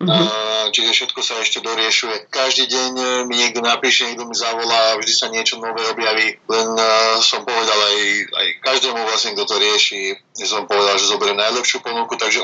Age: 20-39